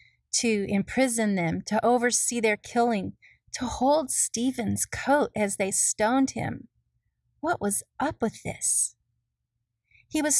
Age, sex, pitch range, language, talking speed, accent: 30-49, female, 200-280 Hz, English, 125 wpm, American